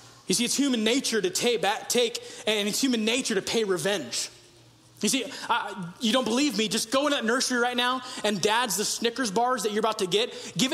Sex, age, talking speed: male, 20-39, 210 wpm